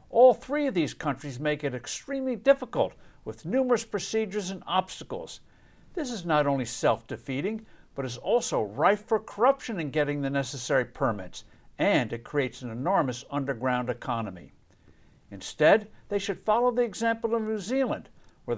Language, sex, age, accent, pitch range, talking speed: English, male, 60-79, American, 130-215 Hz, 150 wpm